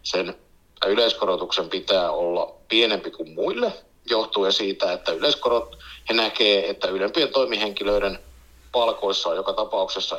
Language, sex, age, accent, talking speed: Finnish, male, 60-79, native, 120 wpm